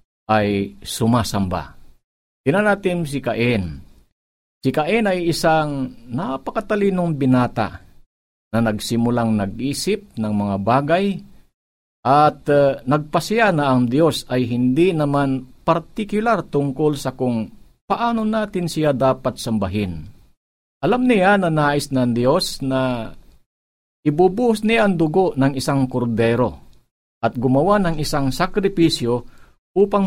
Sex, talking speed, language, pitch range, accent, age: male, 110 wpm, Filipino, 110-170 Hz, native, 50-69